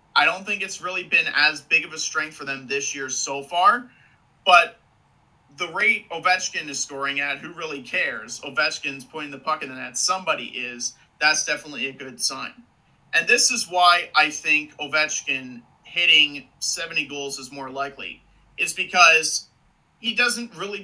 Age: 30-49